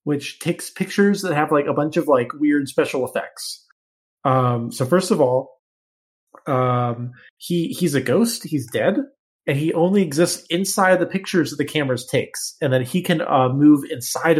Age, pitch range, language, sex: 20-39, 120-165 Hz, English, male